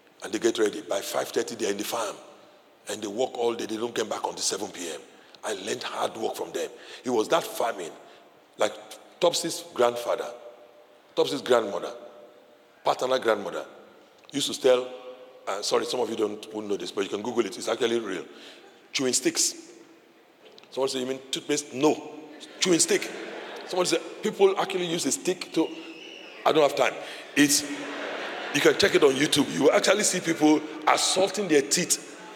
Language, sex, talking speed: English, male, 175 wpm